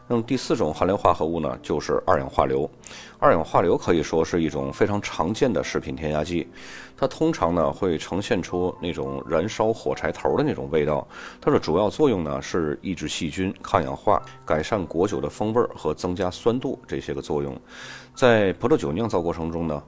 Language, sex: Chinese, male